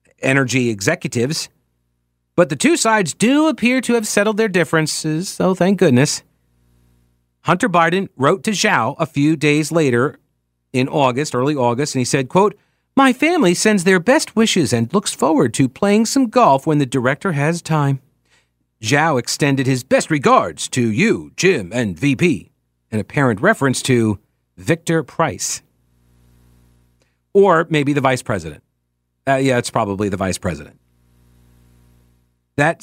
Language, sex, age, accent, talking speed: English, male, 50-69, American, 145 wpm